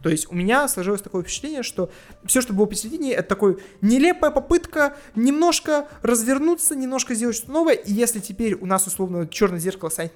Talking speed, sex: 185 wpm, male